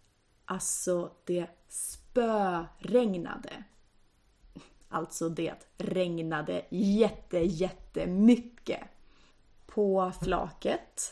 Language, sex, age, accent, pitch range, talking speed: Swedish, female, 30-49, native, 175-235 Hz, 60 wpm